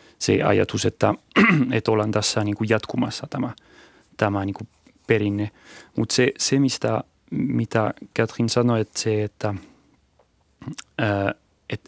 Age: 30-49